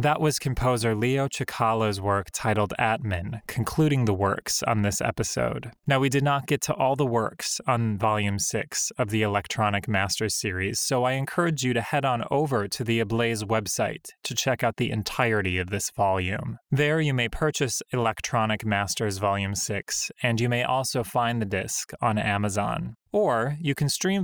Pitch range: 105-130 Hz